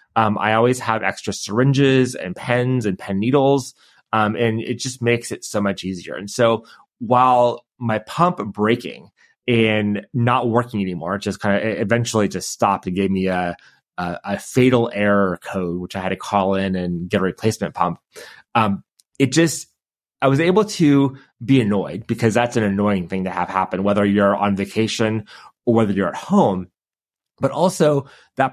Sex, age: male, 30-49